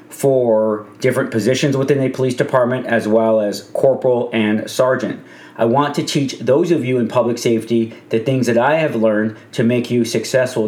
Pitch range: 110-130 Hz